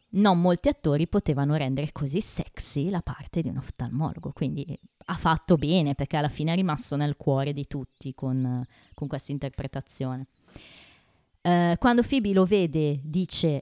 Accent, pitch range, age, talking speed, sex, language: native, 140-200 Hz, 20-39, 150 wpm, female, Italian